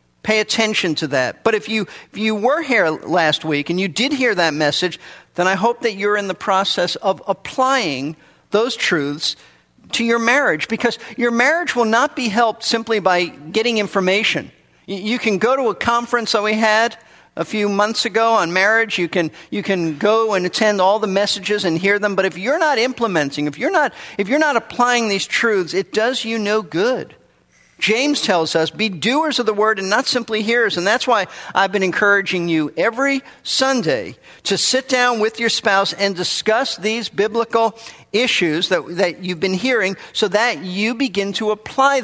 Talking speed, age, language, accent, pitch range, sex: 195 wpm, 50-69, English, American, 180-235 Hz, male